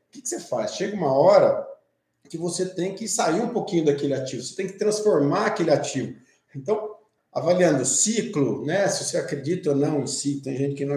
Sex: male